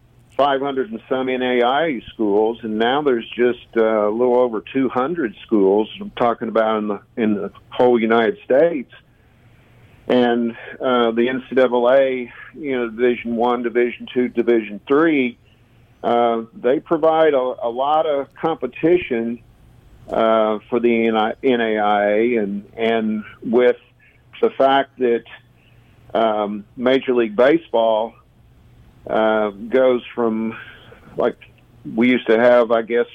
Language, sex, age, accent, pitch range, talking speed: English, male, 50-69, American, 115-130 Hz, 130 wpm